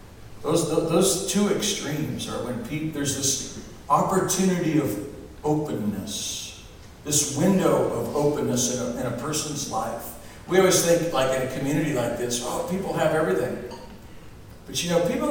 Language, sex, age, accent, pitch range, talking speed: English, male, 60-79, American, 125-165 Hz, 145 wpm